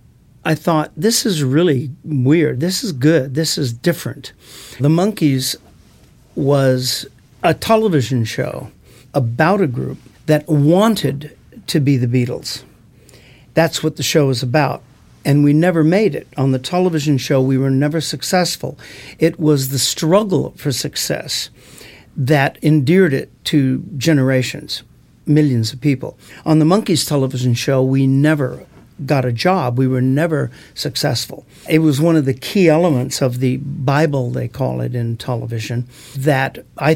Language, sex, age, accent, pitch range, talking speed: English, male, 50-69, American, 130-155 Hz, 150 wpm